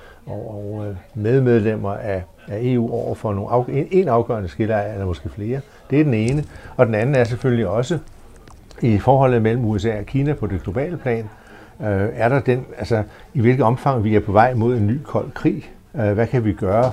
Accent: native